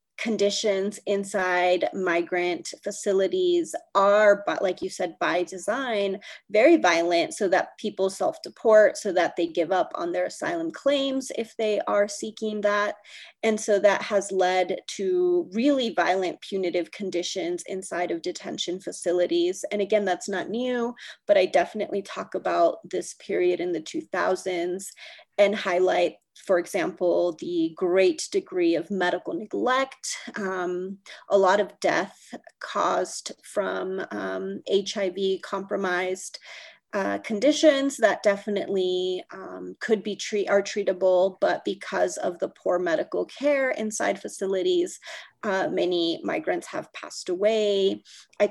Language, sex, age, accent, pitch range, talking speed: English, female, 30-49, American, 185-235 Hz, 130 wpm